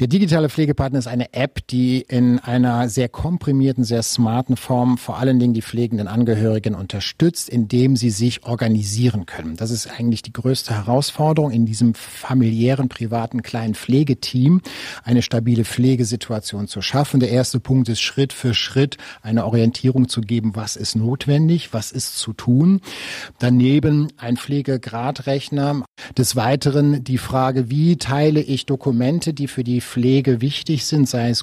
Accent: German